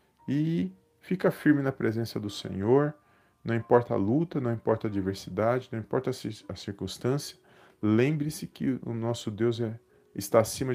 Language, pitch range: Portuguese, 105-130 Hz